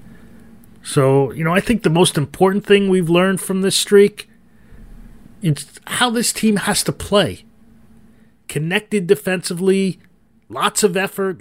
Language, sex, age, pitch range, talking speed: English, male, 40-59, 150-200 Hz, 135 wpm